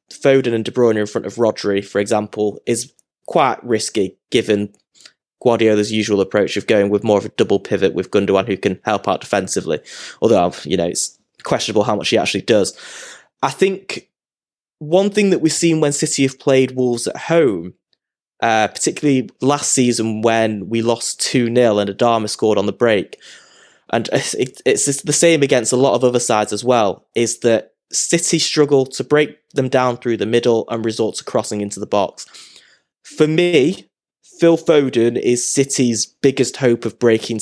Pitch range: 110-145 Hz